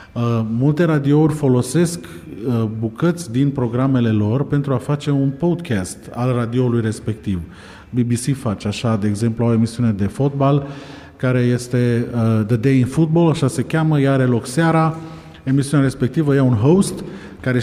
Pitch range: 115-140 Hz